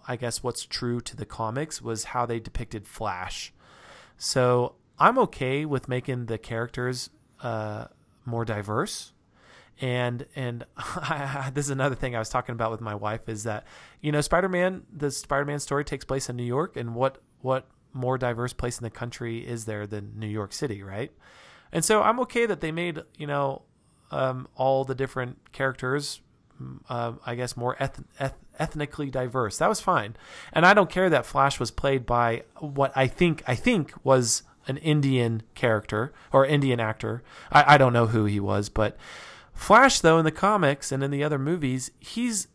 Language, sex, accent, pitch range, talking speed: English, male, American, 120-145 Hz, 180 wpm